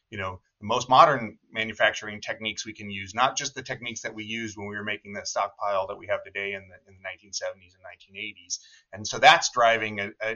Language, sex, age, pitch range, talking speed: English, male, 30-49, 100-125 Hz, 225 wpm